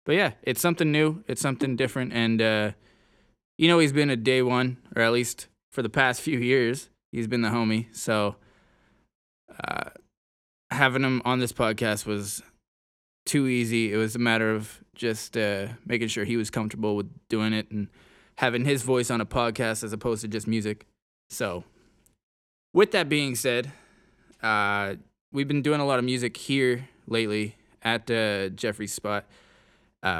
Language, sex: English, male